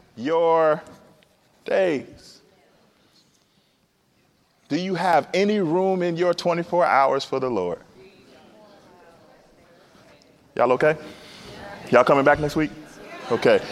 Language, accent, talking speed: English, American, 95 wpm